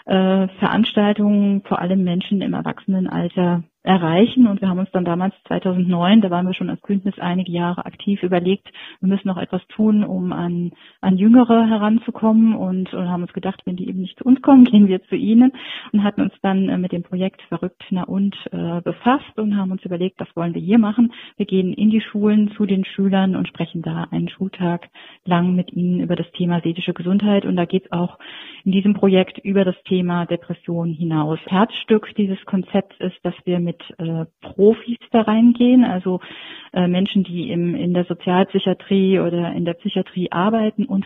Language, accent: German, German